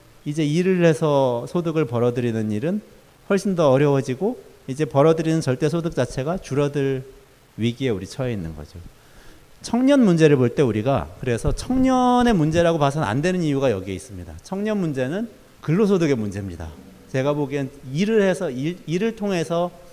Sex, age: male, 40-59